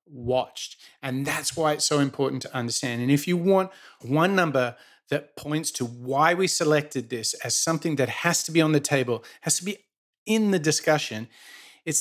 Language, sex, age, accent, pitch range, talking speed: English, male, 30-49, Australian, 130-170 Hz, 190 wpm